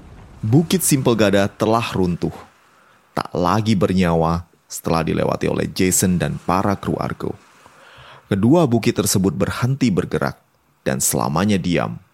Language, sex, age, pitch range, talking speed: Indonesian, male, 30-49, 85-125 Hz, 115 wpm